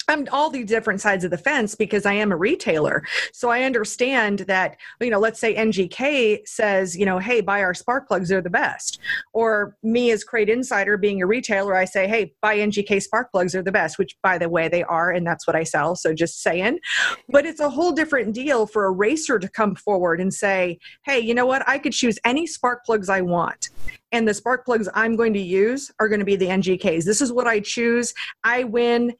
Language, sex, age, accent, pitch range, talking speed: English, female, 30-49, American, 195-250 Hz, 230 wpm